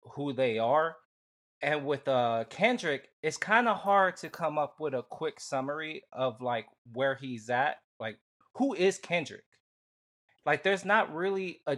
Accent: American